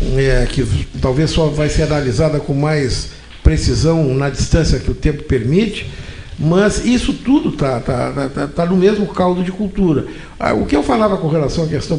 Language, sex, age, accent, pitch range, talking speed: Portuguese, male, 60-79, Brazilian, 145-205 Hz, 160 wpm